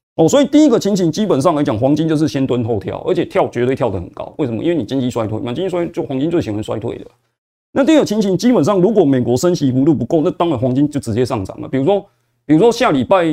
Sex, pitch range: male, 120-175 Hz